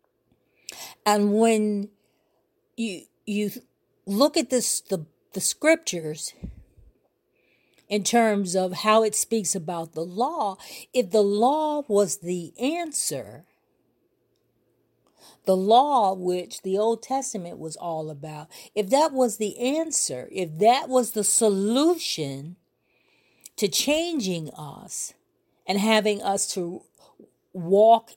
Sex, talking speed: female, 110 wpm